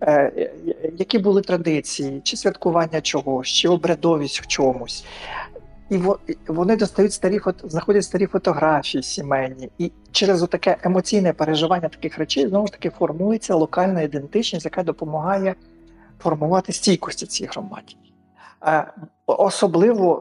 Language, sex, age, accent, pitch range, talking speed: Ukrainian, male, 50-69, native, 150-190 Hz, 115 wpm